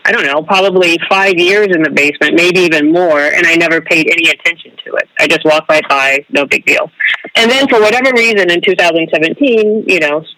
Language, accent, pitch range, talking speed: English, American, 155-195 Hz, 200 wpm